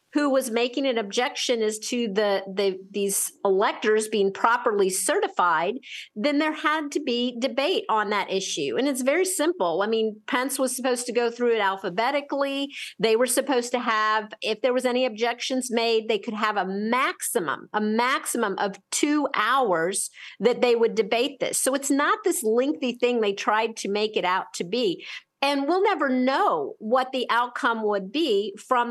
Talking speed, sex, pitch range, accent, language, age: 180 wpm, female, 220-285 Hz, American, English, 50-69